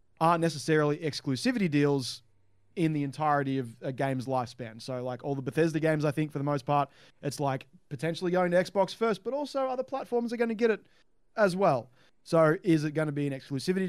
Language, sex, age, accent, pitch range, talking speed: English, male, 20-39, Australian, 130-155 Hz, 210 wpm